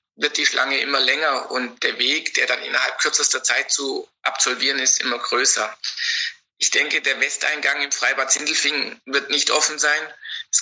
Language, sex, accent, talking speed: German, male, German, 170 wpm